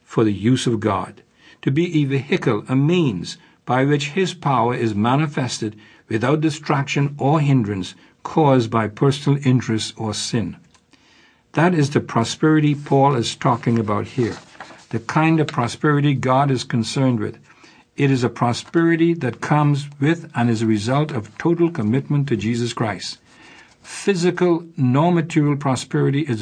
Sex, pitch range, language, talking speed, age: male, 115-145 Hz, English, 150 wpm, 60-79